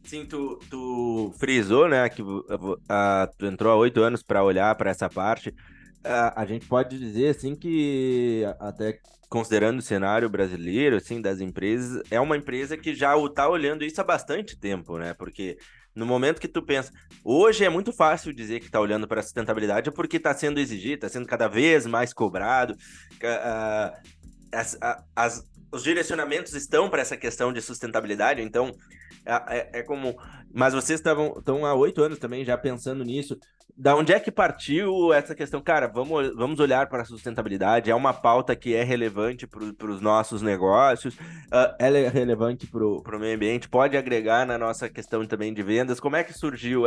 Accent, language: Brazilian, Portuguese